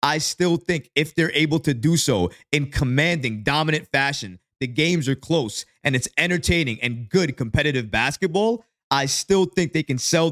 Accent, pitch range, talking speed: American, 130-170 Hz, 175 wpm